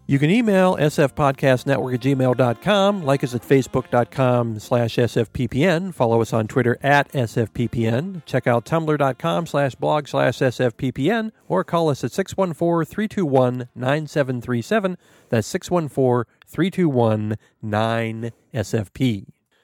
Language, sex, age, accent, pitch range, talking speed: English, male, 40-59, American, 125-175 Hz, 100 wpm